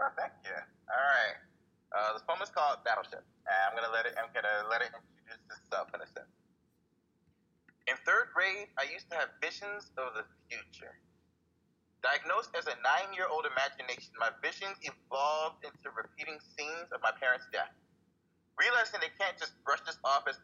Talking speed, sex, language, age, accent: 170 wpm, male, English, 20-39, American